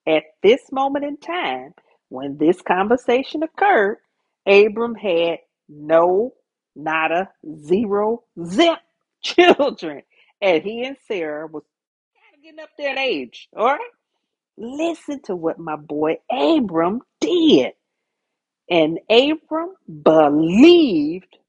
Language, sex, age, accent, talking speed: English, female, 40-59, American, 105 wpm